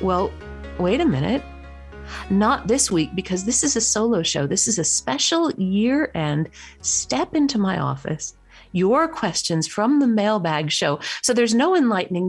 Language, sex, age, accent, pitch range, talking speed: English, female, 50-69, American, 160-220 Hz, 155 wpm